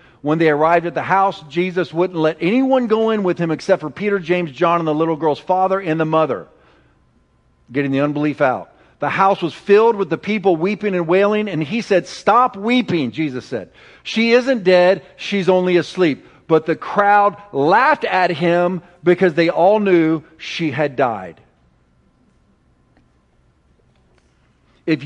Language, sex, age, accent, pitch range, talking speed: English, male, 50-69, American, 155-210 Hz, 165 wpm